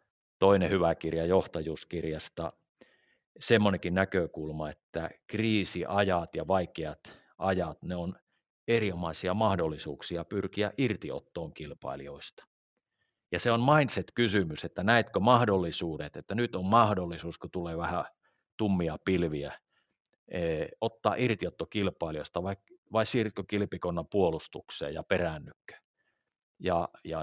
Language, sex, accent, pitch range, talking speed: Finnish, male, native, 80-105 Hz, 100 wpm